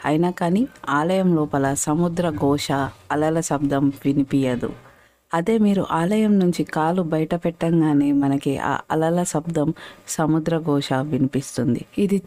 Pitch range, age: 145-170 Hz, 50-69